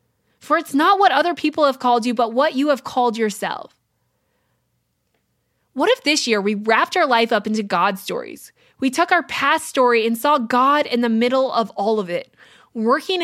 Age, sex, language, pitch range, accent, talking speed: 20-39, female, English, 225-295 Hz, American, 195 wpm